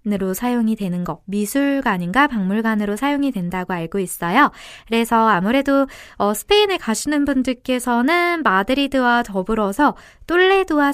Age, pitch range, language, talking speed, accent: 20-39, 195-290 Hz, English, 105 wpm, Korean